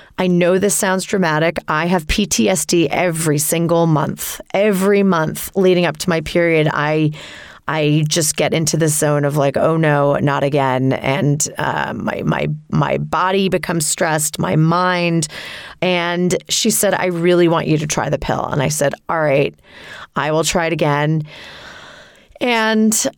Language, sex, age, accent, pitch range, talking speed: English, female, 30-49, American, 160-205 Hz, 165 wpm